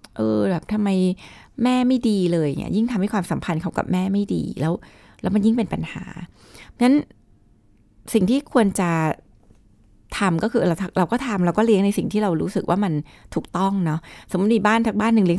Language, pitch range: Thai, 170-215 Hz